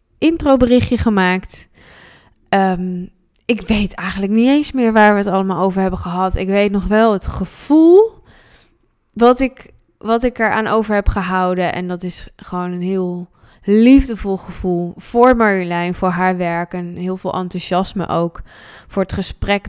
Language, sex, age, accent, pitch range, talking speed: Dutch, female, 20-39, Dutch, 175-225 Hz, 155 wpm